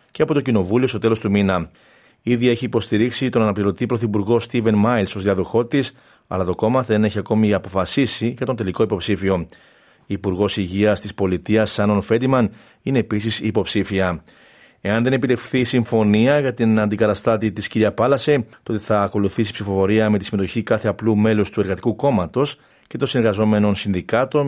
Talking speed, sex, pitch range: 165 wpm, male, 105-120 Hz